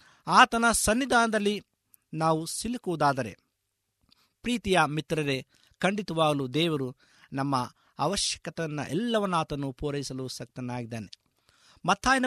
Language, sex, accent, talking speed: Kannada, male, native, 75 wpm